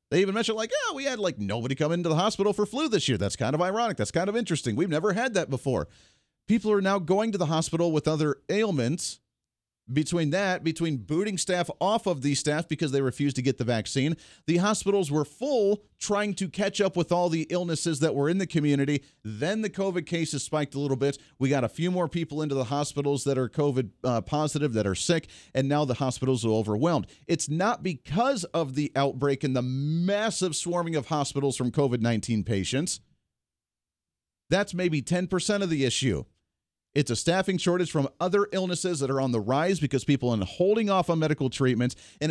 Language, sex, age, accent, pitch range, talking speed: English, male, 40-59, American, 135-180 Hz, 205 wpm